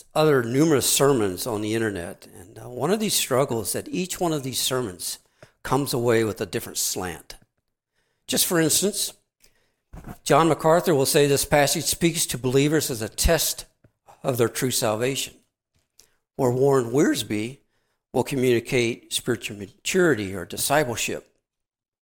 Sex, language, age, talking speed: male, English, 60-79, 140 wpm